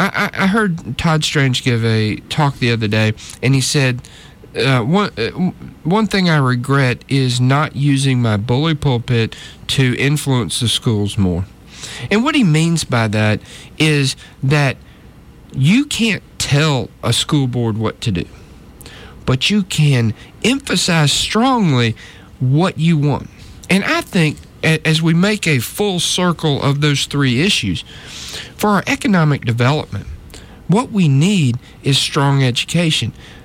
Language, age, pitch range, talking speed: English, 40-59, 120-160 Hz, 145 wpm